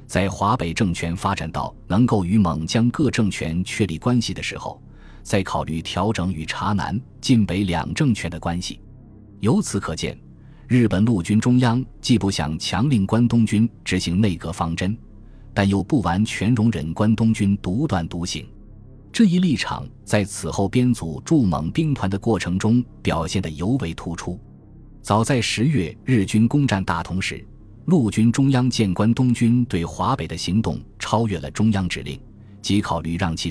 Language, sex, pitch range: Chinese, male, 90-120 Hz